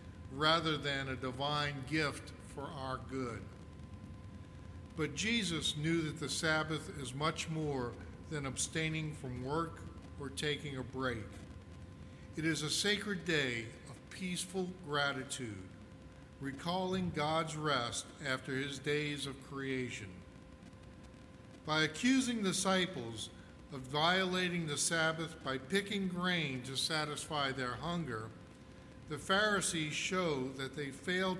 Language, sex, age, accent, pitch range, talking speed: English, male, 50-69, American, 130-165 Hz, 115 wpm